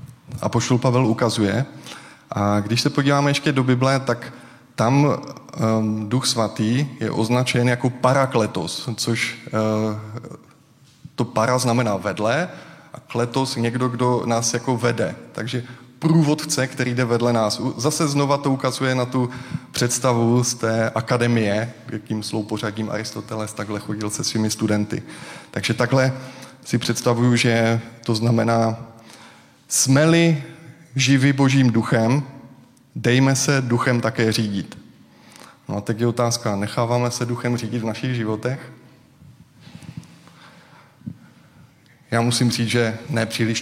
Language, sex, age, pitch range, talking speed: Czech, male, 20-39, 110-130 Hz, 125 wpm